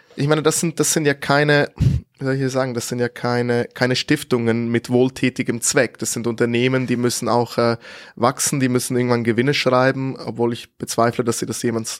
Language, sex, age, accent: German, male, 20-39, German